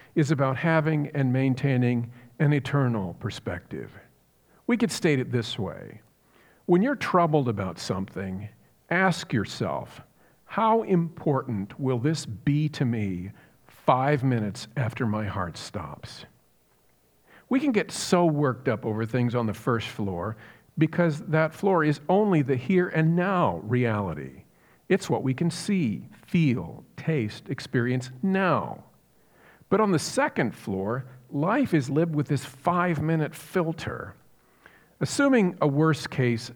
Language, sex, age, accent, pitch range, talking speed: English, male, 50-69, American, 110-160 Hz, 130 wpm